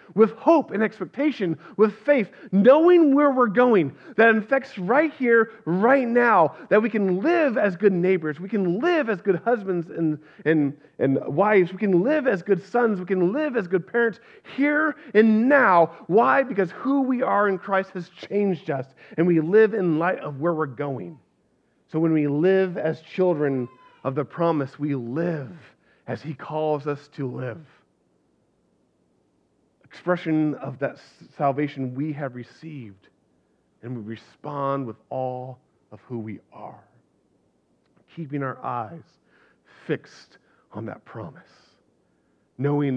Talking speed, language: 150 wpm, English